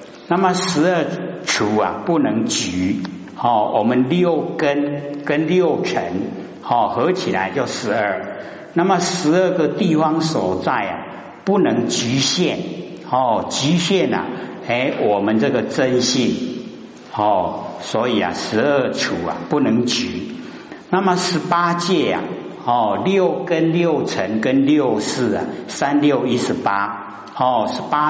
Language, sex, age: Chinese, male, 60-79